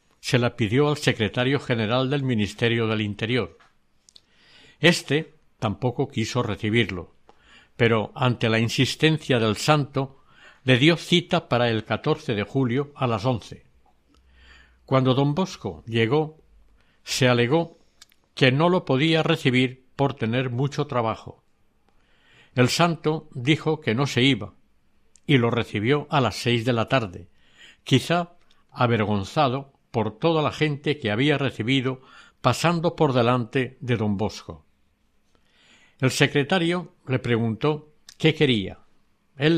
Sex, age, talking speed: male, 60-79, 125 wpm